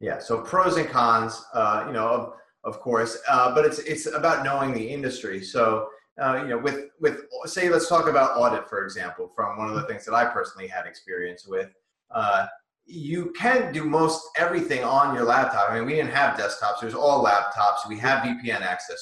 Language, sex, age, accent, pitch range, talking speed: English, male, 30-49, American, 120-165 Hz, 205 wpm